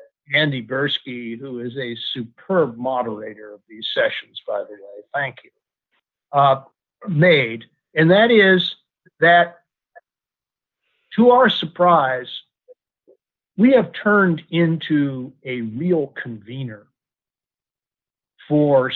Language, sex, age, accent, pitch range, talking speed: English, male, 50-69, American, 130-175 Hz, 100 wpm